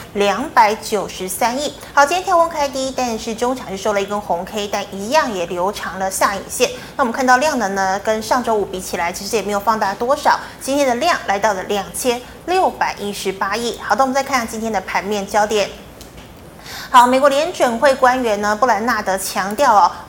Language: Chinese